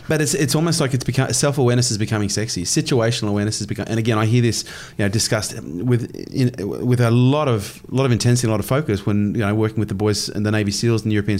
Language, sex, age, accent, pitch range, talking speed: English, male, 30-49, Australian, 105-135 Hz, 270 wpm